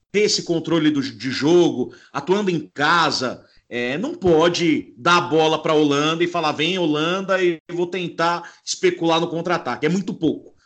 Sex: male